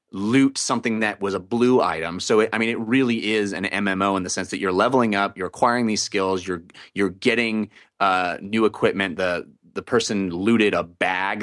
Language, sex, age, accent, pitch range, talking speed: English, male, 30-49, American, 95-120 Hz, 200 wpm